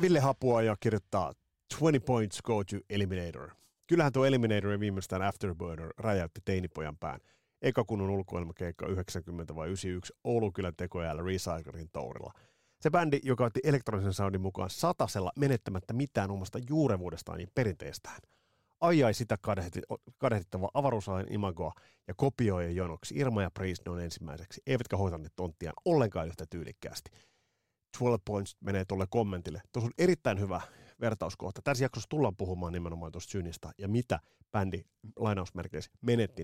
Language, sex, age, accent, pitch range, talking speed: Finnish, male, 30-49, native, 90-120 Hz, 140 wpm